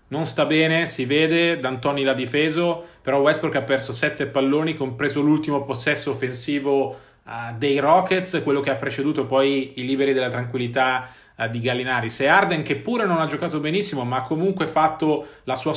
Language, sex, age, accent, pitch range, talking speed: Italian, male, 30-49, native, 130-160 Hz, 180 wpm